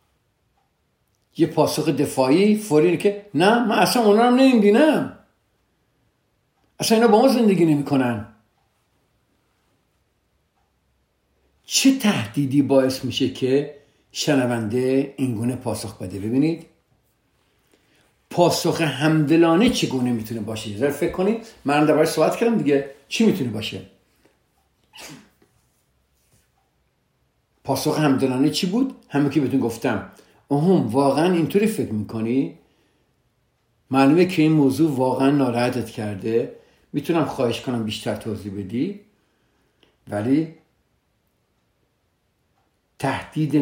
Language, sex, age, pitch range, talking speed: Persian, male, 60-79, 115-160 Hz, 100 wpm